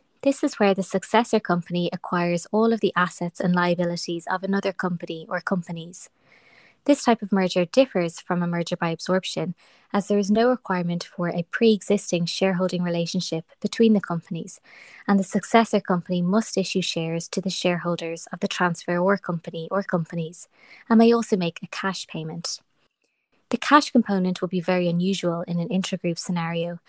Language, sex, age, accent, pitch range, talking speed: English, female, 20-39, Irish, 175-205 Hz, 165 wpm